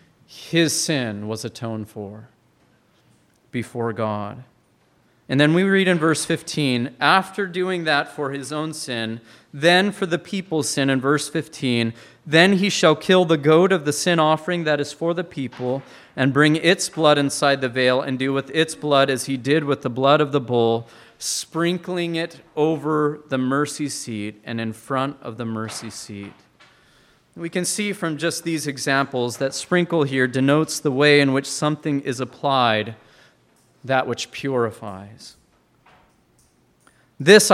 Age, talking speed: 40-59, 160 wpm